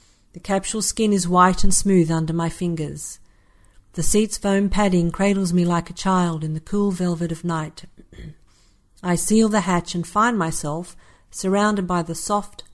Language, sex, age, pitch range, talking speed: English, female, 50-69, 155-190 Hz, 170 wpm